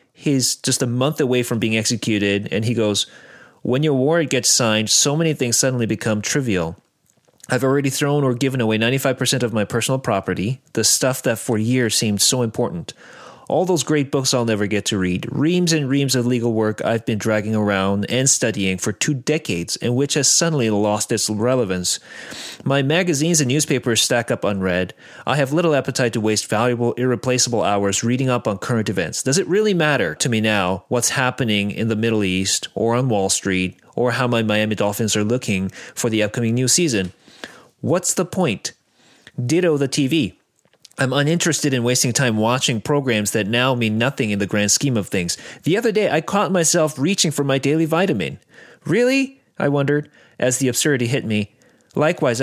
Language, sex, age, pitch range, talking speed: English, male, 30-49, 110-145 Hz, 190 wpm